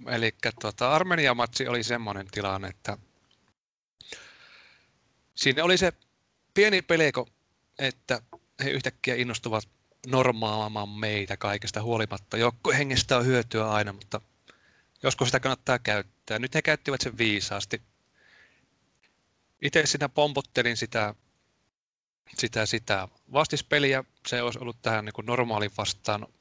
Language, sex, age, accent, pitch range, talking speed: Finnish, male, 30-49, native, 105-130 Hz, 110 wpm